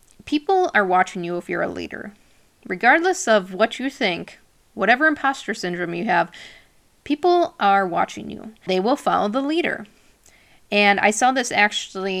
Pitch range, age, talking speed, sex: 185-235 Hz, 20-39, 155 wpm, female